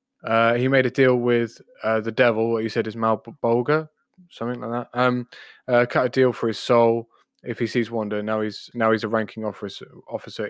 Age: 20-39